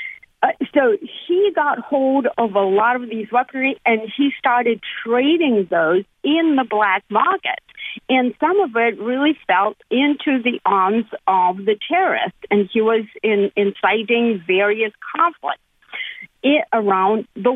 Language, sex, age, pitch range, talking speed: English, female, 50-69, 205-275 Hz, 140 wpm